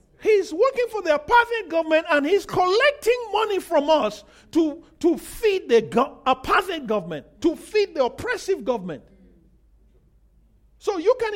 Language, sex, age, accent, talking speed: English, male, 50-69, Nigerian, 145 wpm